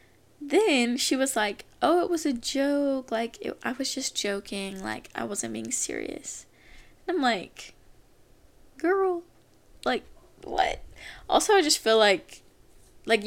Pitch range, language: 205-325 Hz, English